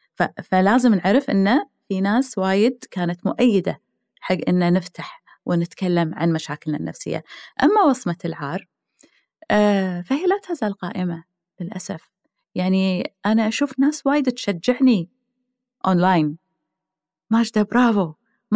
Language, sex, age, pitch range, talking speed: Arabic, female, 30-49, 170-220 Hz, 105 wpm